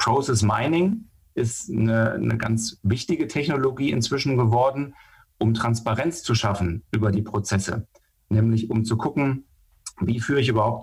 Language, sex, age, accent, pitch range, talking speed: German, male, 40-59, German, 105-120 Hz, 140 wpm